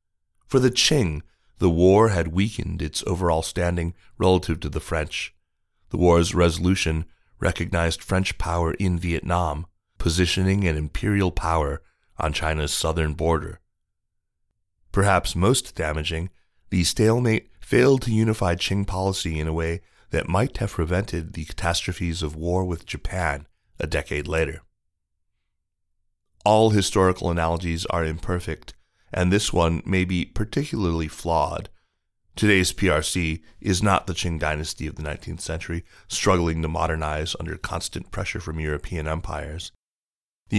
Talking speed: 130 wpm